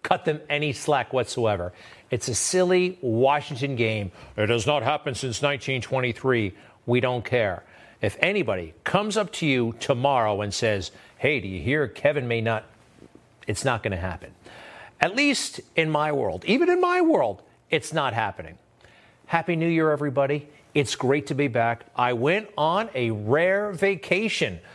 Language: English